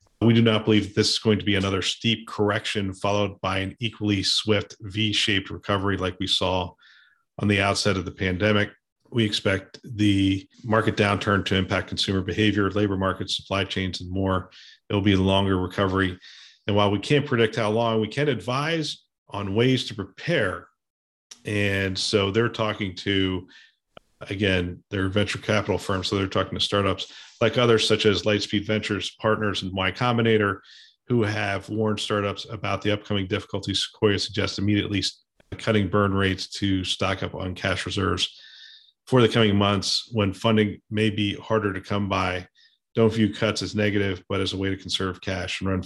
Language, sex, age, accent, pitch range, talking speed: English, male, 40-59, American, 95-110 Hz, 175 wpm